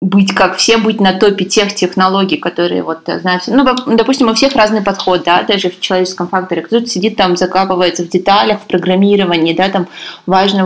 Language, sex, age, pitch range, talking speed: Russian, female, 20-39, 185-220 Hz, 185 wpm